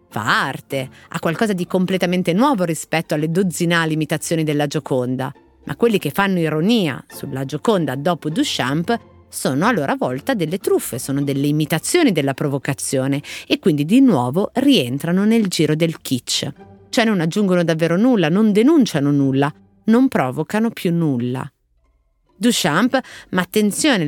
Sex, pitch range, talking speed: female, 145-205 Hz, 140 wpm